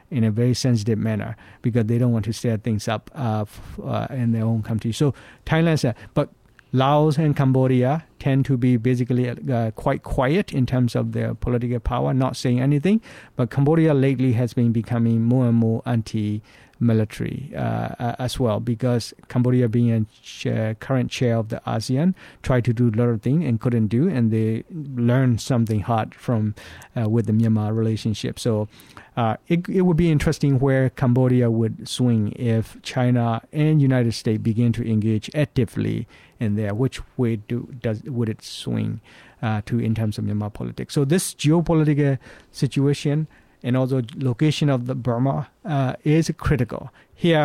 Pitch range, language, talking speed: 115-135 Hz, English, 175 wpm